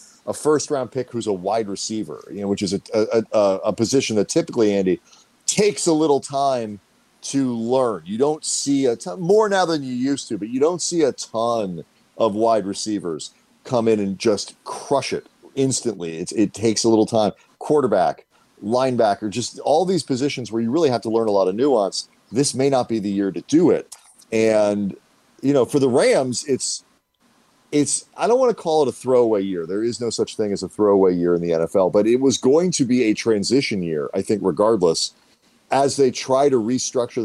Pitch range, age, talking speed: 100-135 Hz, 40-59, 210 wpm